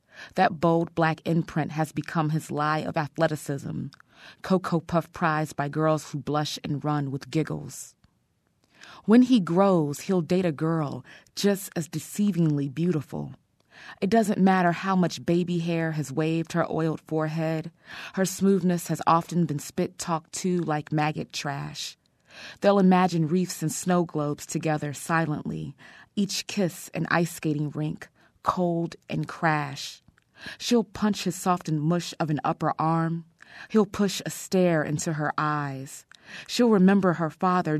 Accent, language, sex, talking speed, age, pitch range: American, English, female, 145 wpm, 20-39, 150-180 Hz